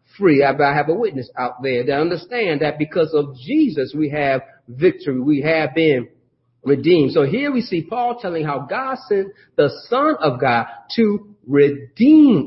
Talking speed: 170 wpm